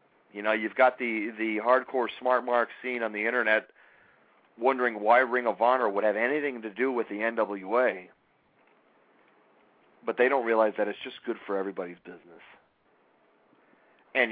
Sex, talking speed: male, 160 wpm